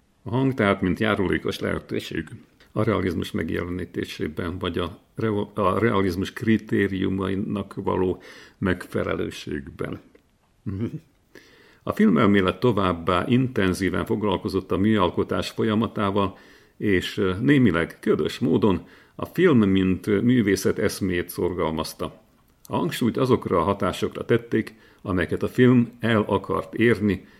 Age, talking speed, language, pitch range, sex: 50-69, 105 wpm, Hungarian, 95-110 Hz, male